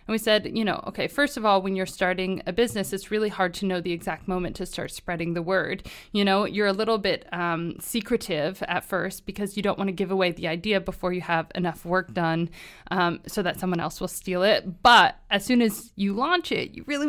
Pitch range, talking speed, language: 180-220 Hz, 240 wpm, English